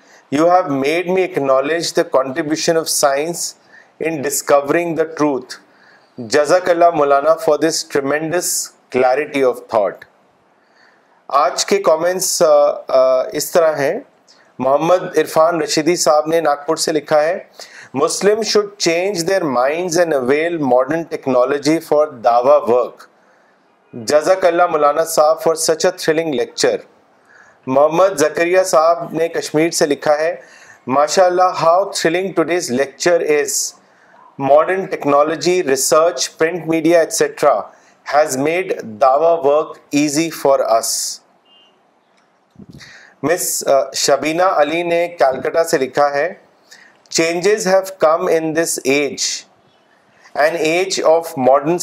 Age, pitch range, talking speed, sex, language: 40-59, 145-175 Hz, 120 wpm, male, Urdu